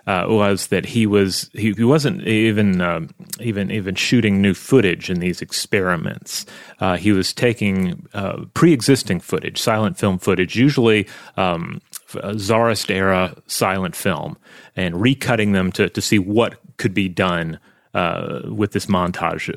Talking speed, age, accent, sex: 145 wpm, 30-49, American, male